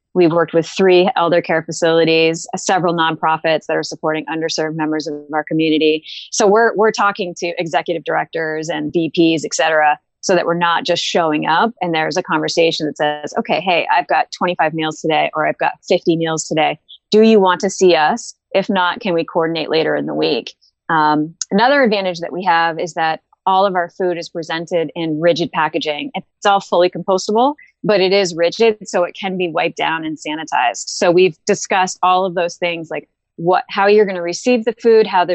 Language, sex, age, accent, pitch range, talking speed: English, female, 30-49, American, 160-190 Hz, 205 wpm